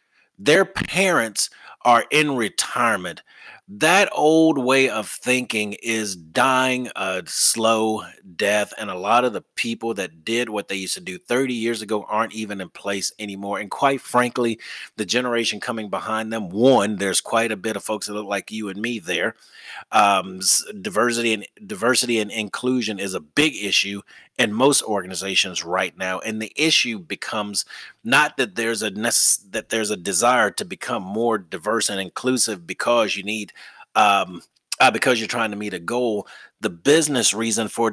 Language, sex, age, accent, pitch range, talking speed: English, male, 30-49, American, 105-125 Hz, 170 wpm